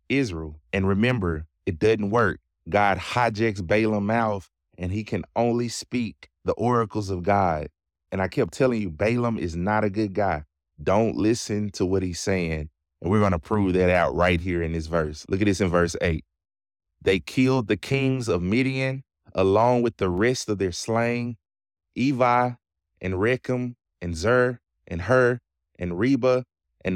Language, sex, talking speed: English, male, 170 wpm